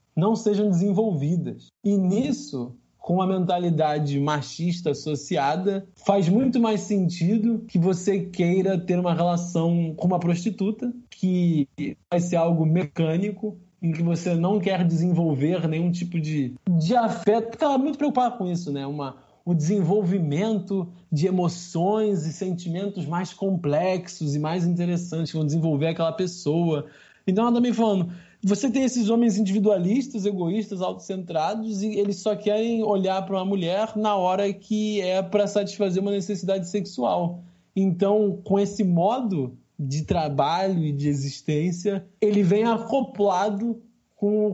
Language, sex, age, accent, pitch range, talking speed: Portuguese, male, 20-39, Brazilian, 170-210 Hz, 140 wpm